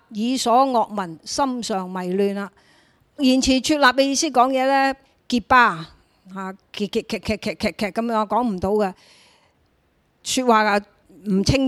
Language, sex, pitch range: Chinese, female, 200-250 Hz